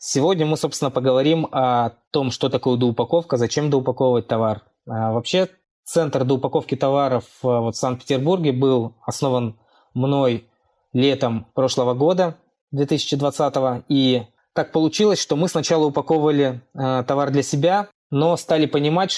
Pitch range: 130-155 Hz